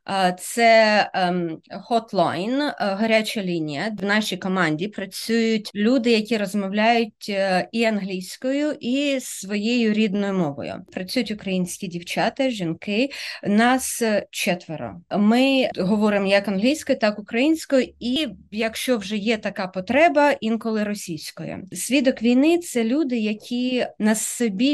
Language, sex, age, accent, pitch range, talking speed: Ukrainian, female, 20-39, native, 190-235 Hz, 110 wpm